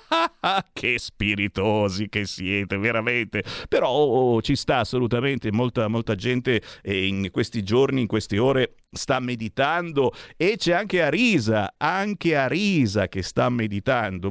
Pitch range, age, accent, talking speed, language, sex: 110-175 Hz, 50-69, native, 135 wpm, Italian, male